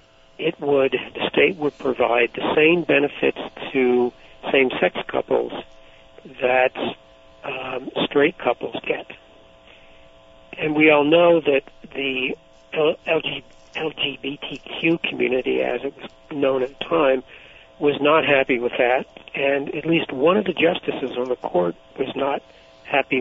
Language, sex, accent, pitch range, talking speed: English, male, American, 125-150 Hz, 130 wpm